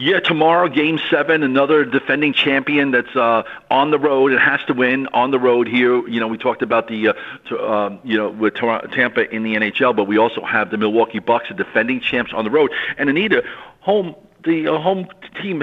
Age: 50-69